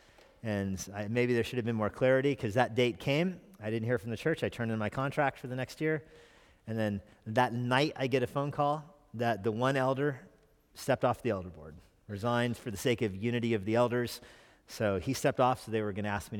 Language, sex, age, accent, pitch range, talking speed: English, male, 40-59, American, 110-135 Hz, 240 wpm